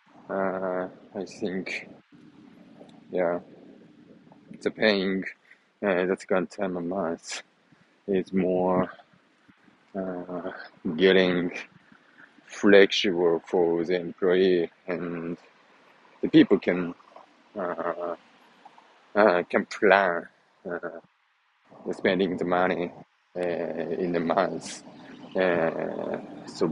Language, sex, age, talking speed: English, male, 20-39, 90 wpm